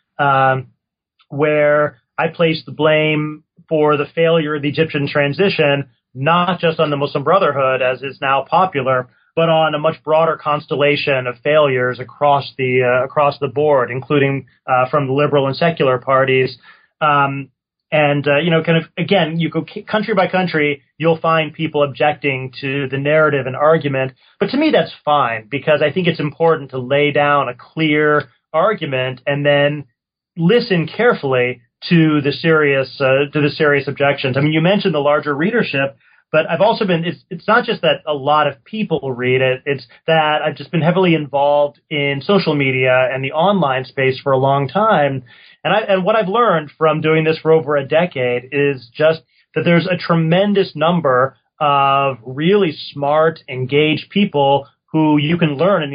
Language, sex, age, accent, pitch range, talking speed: English, male, 30-49, American, 140-165 Hz, 175 wpm